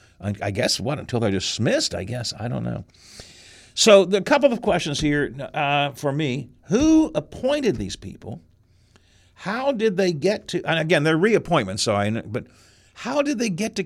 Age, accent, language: 50-69, American, English